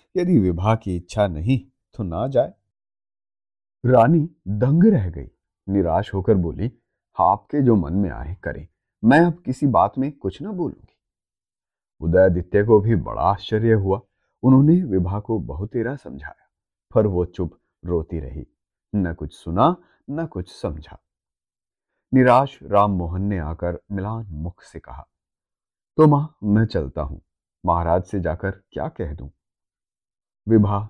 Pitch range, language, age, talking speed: 85-115 Hz, Hindi, 30-49, 145 wpm